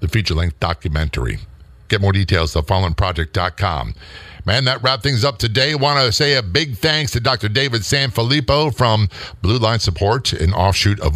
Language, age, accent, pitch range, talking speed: English, 50-69, American, 90-120 Hz, 170 wpm